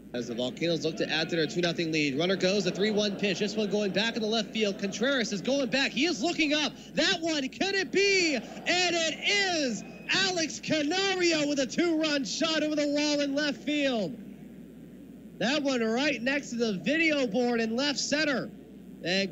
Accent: American